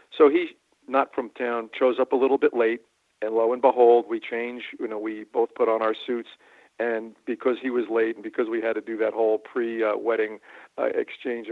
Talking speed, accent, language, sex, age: 210 wpm, American, English, male, 50-69